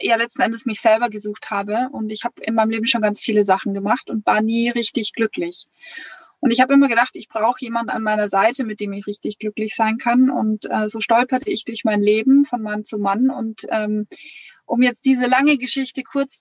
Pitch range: 220-255 Hz